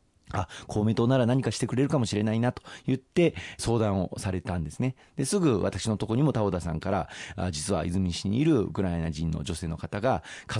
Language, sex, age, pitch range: Japanese, male, 40-59, 90-120 Hz